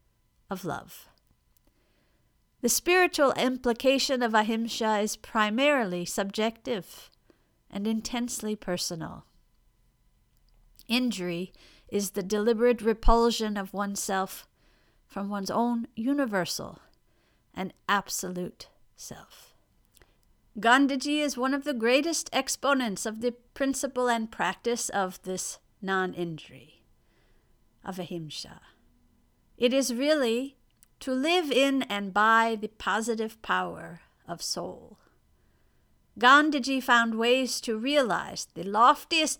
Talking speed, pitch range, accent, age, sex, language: 100 wpm, 205-265 Hz, American, 50-69, female, English